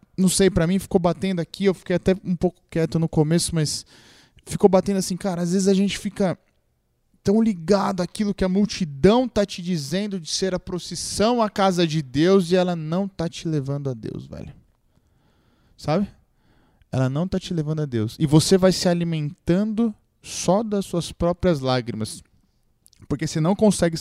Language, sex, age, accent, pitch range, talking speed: Portuguese, male, 20-39, Brazilian, 155-200 Hz, 180 wpm